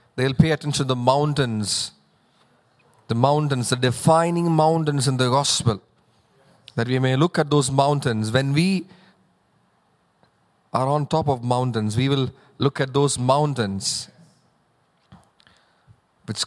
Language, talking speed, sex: English, 130 wpm, male